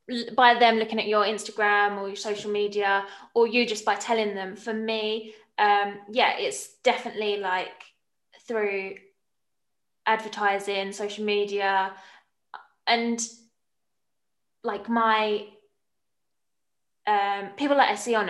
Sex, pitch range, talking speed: female, 200-225 Hz, 120 wpm